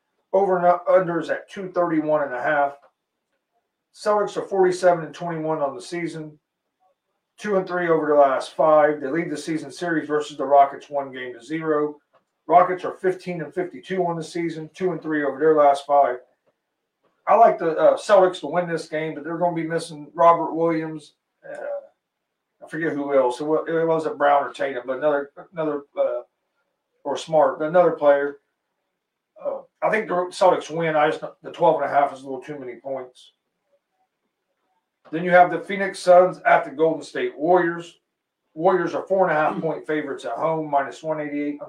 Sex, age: male, 40-59